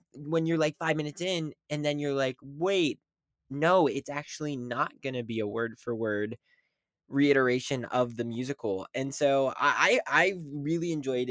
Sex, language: male, English